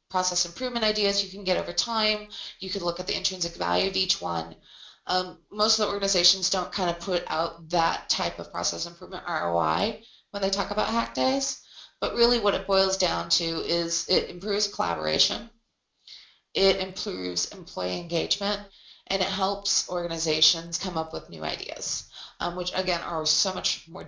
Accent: American